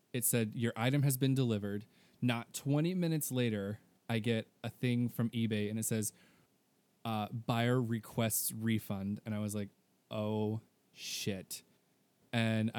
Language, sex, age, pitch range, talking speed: English, male, 20-39, 110-125 Hz, 145 wpm